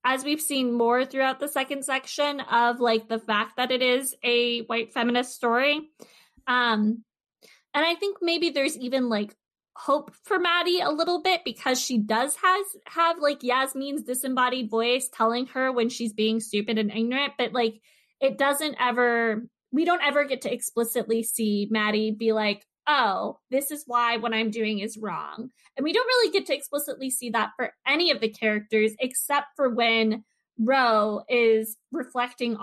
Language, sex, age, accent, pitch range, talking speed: English, female, 20-39, American, 225-280 Hz, 175 wpm